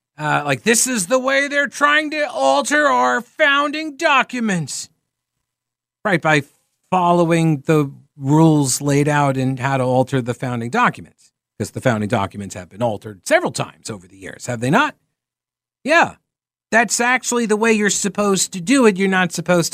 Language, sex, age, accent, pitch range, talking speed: English, male, 50-69, American, 150-225 Hz, 165 wpm